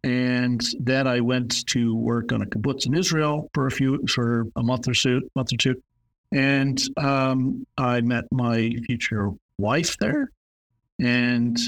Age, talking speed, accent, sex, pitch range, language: 50-69, 160 wpm, American, male, 120-135 Hz, English